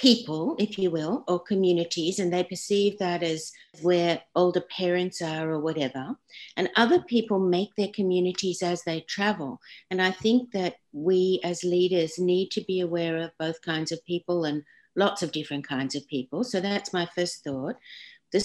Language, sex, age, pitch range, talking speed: English, female, 60-79, 165-195 Hz, 180 wpm